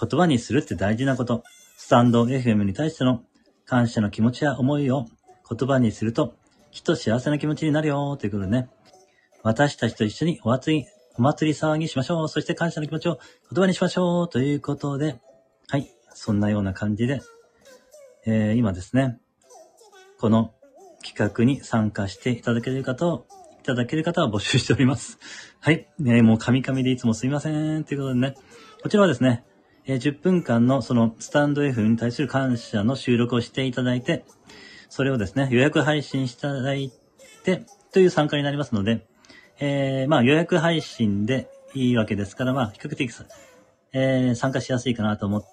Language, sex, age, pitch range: Japanese, male, 40-59, 115-150 Hz